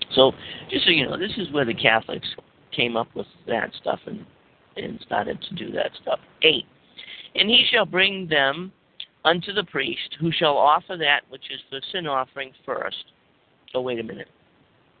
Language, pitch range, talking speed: English, 120-160 Hz, 180 wpm